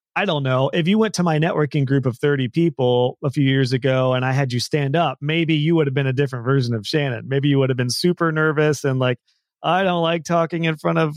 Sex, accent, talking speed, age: male, American, 265 wpm, 30-49